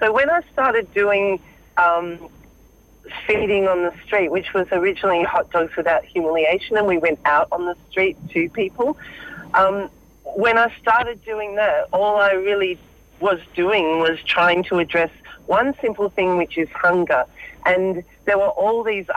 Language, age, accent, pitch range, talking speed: English, 40-59, Australian, 170-200 Hz, 165 wpm